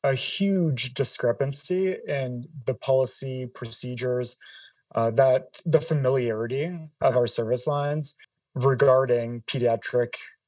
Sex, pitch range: male, 125-150 Hz